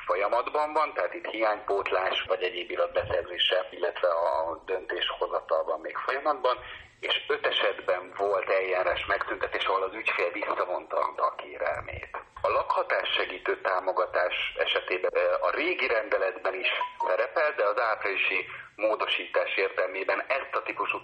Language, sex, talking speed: Hungarian, male, 120 wpm